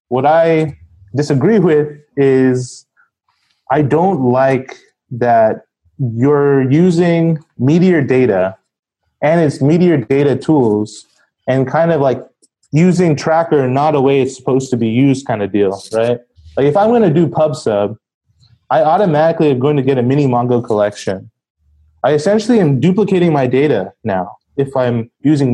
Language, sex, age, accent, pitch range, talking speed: English, male, 20-39, American, 120-155 Hz, 150 wpm